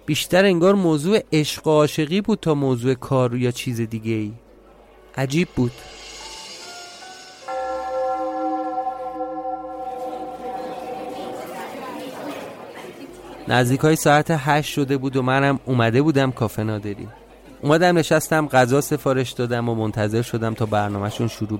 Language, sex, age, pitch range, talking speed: Persian, male, 30-49, 115-155 Hz, 110 wpm